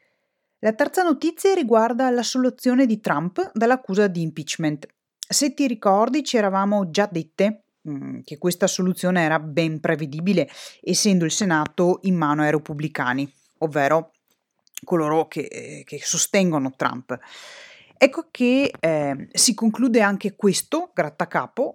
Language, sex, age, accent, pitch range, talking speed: Italian, female, 30-49, native, 170-255 Hz, 125 wpm